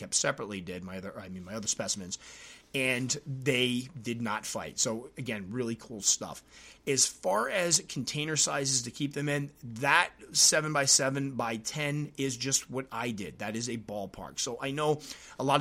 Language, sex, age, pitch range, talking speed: English, male, 30-49, 110-135 Hz, 190 wpm